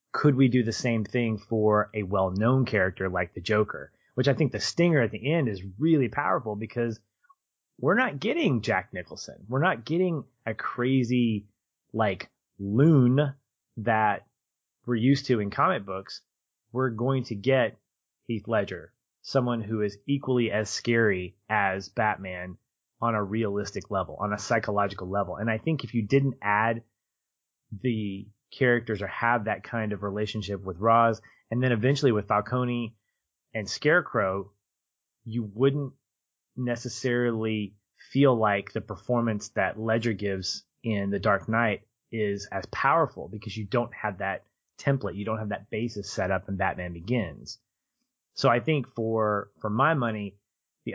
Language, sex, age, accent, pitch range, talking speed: English, male, 30-49, American, 105-125 Hz, 155 wpm